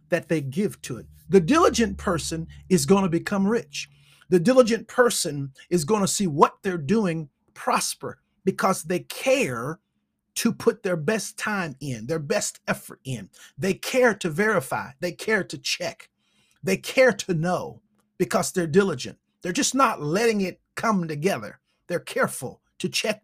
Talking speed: 160 wpm